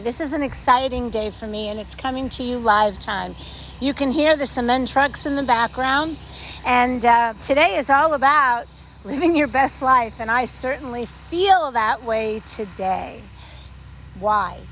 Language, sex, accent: English, female, American